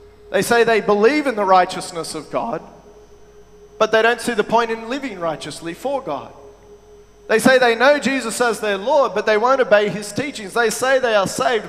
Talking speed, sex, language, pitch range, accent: 200 wpm, male, English, 185-245 Hz, Australian